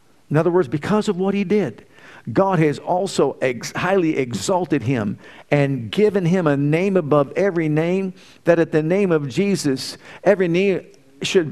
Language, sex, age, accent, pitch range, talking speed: English, male, 50-69, American, 160-195 Hz, 160 wpm